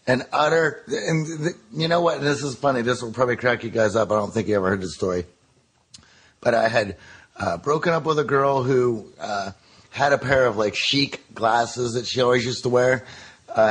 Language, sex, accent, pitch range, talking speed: English, male, American, 120-150 Hz, 215 wpm